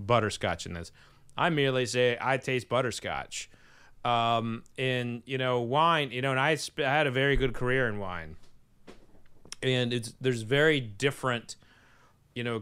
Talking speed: 155 wpm